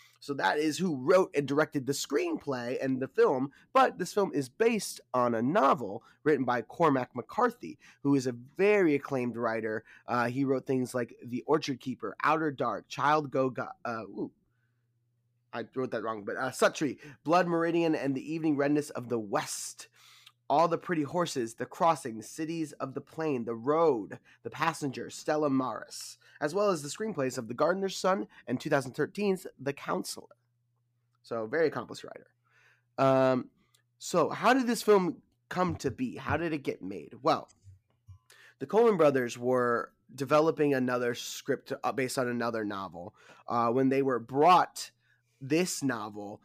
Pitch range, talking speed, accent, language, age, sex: 120-155 Hz, 165 wpm, American, English, 20-39, male